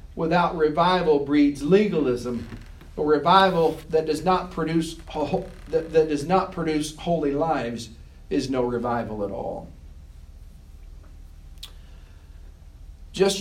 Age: 40-59